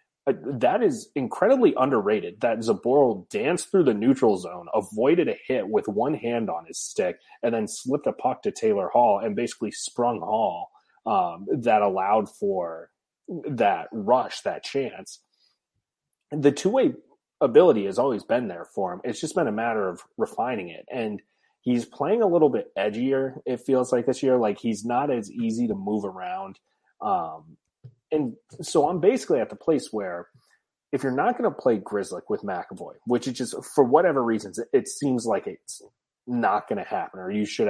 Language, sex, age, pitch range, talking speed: English, male, 30-49, 120-185 Hz, 180 wpm